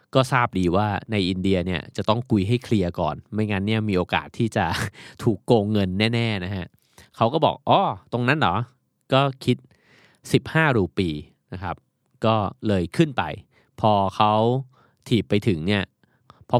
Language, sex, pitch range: Thai, male, 95-125 Hz